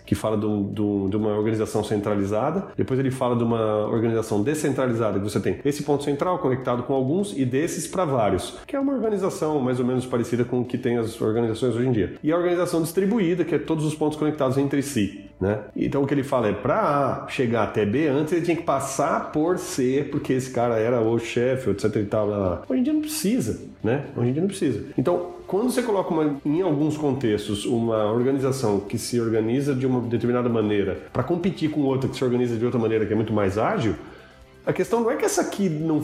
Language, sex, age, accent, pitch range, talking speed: Portuguese, male, 30-49, Brazilian, 115-155 Hz, 225 wpm